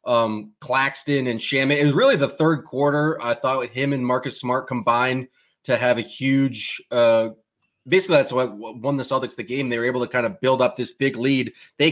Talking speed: 215 wpm